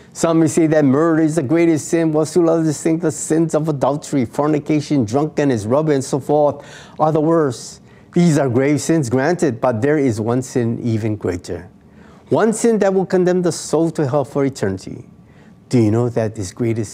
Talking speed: 195 wpm